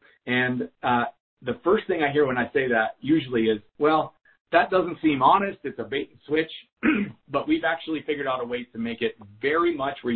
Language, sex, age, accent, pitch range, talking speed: English, male, 40-59, American, 115-155 Hz, 215 wpm